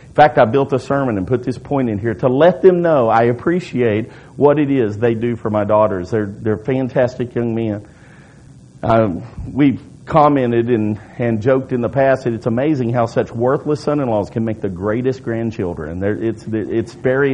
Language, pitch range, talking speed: English, 110-145 Hz, 190 wpm